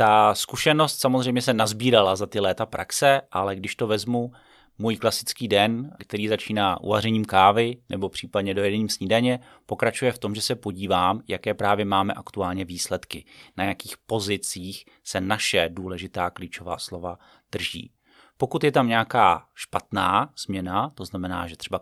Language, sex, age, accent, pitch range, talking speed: Czech, male, 30-49, native, 95-120 Hz, 150 wpm